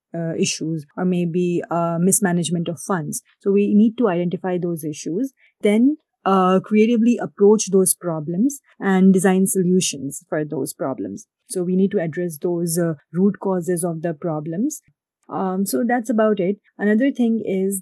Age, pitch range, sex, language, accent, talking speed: 30-49, 175-200 Hz, female, English, Indian, 160 wpm